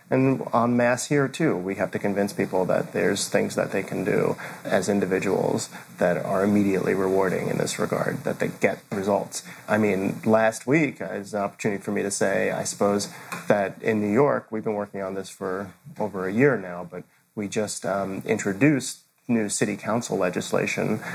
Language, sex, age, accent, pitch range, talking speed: English, male, 30-49, American, 100-120 Hz, 190 wpm